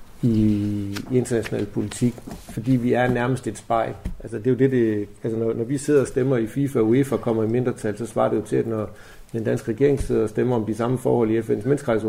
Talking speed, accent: 230 wpm, native